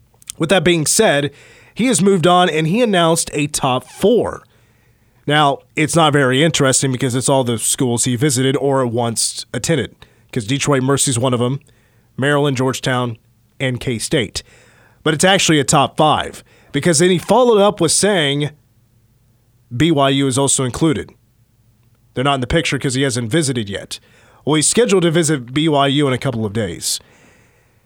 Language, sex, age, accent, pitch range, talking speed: English, male, 30-49, American, 120-160 Hz, 170 wpm